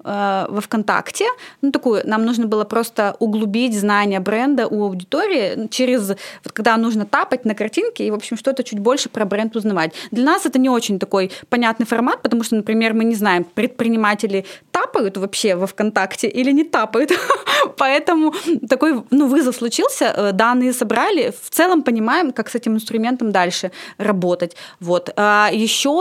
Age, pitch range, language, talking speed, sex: 20-39, 205-255 Hz, Russian, 155 wpm, female